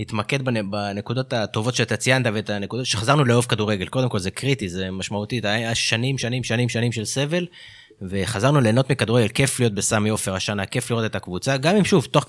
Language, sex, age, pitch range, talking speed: Hebrew, male, 20-39, 110-130 Hz, 195 wpm